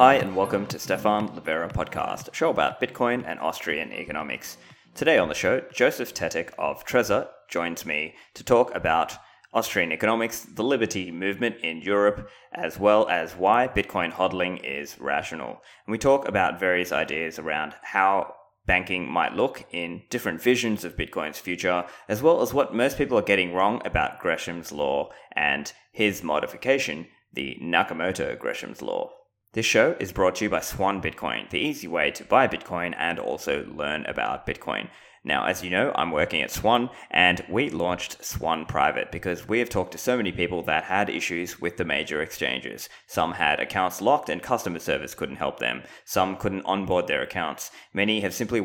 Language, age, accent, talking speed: English, 20-39, Australian, 180 wpm